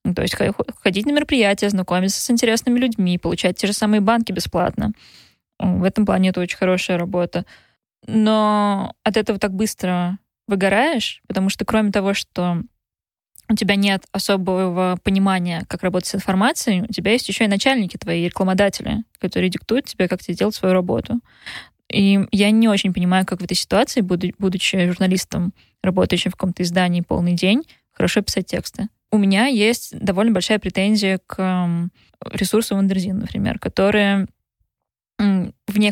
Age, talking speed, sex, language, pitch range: 20-39, 150 wpm, female, Russian, 185-215 Hz